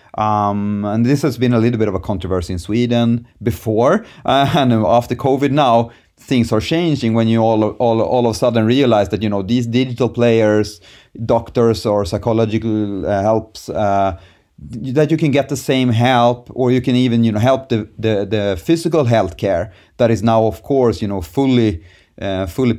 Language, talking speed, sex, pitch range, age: English, 190 wpm, male, 105-125 Hz, 30-49